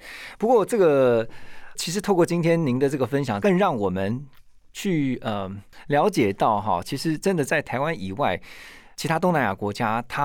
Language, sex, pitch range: Chinese, male, 110-155 Hz